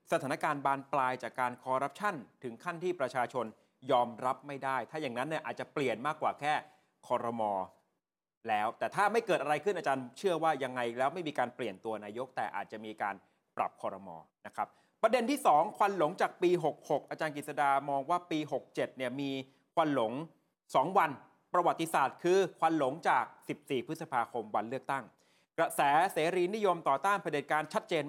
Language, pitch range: Thai, 130-165 Hz